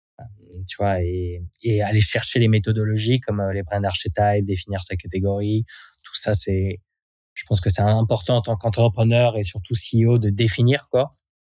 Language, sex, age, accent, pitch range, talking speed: French, male, 20-39, French, 90-105 Hz, 170 wpm